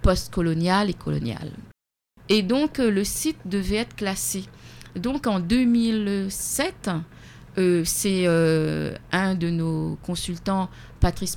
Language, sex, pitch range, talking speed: French, female, 160-205 Hz, 110 wpm